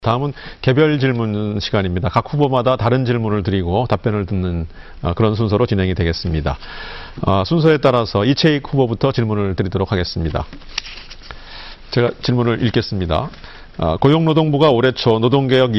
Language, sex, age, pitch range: Korean, male, 40-59, 110-140 Hz